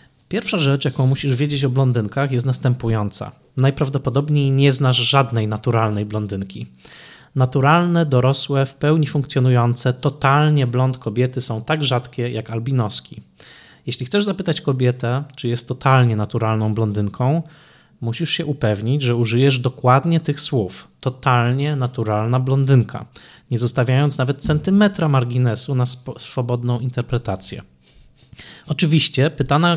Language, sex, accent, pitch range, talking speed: Polish, male, native, 120-145 Hz, 115 wpm